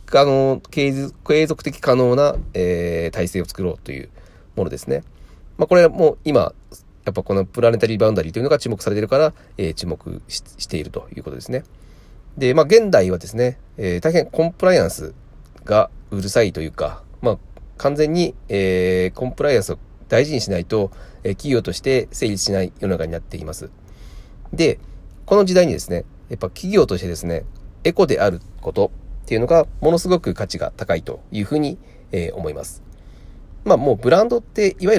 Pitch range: 90-155 Hz